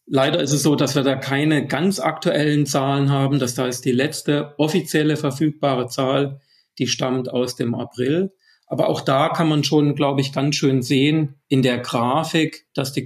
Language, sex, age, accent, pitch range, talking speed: German, male, 40-59, German, 130-155 Hz, 185 wpm